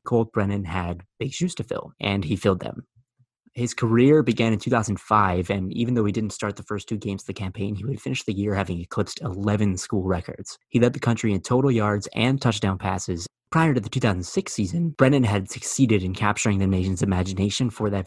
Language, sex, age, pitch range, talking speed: English, male, 20-39, 100-120 Hz, 215 wpm